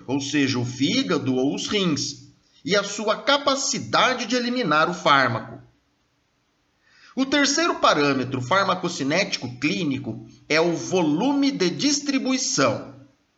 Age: 50-69